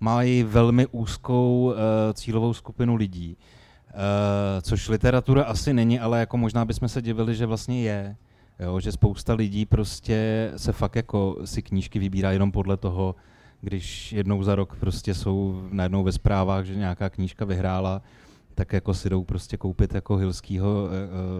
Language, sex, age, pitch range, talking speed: Czech, male, 30-49, 100-120 Hz, 160 wpm